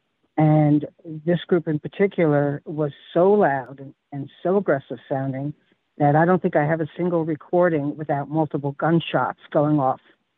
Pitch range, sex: 145-165 Hz, female